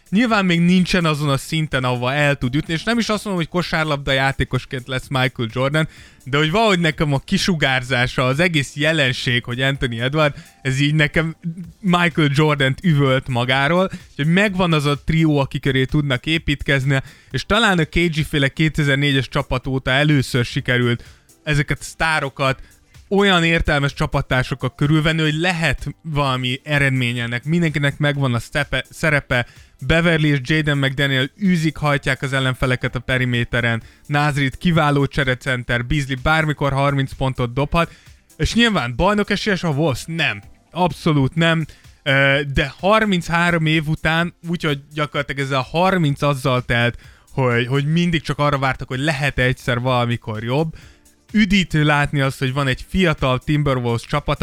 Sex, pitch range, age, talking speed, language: male, 130-160 Hz, 20-39, 145 wpm, Hungarian